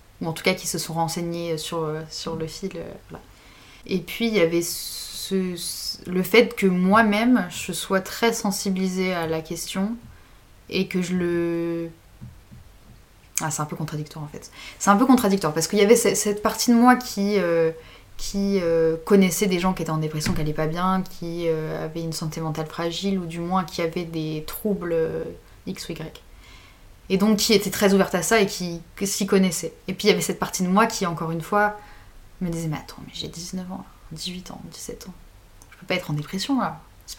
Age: 20-39